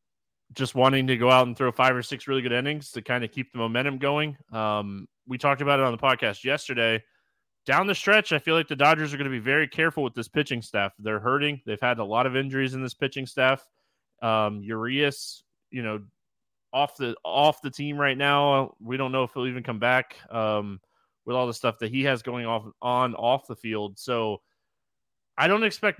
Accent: American